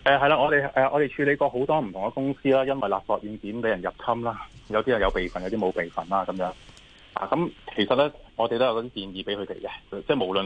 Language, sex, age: Chinese, male, 20-39